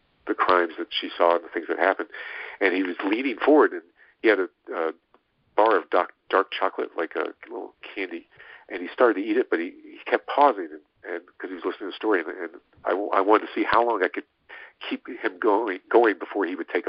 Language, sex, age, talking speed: English, male, 50-69, 245 wpm